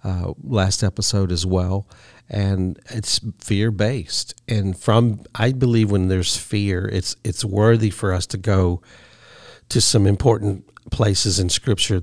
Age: 50-69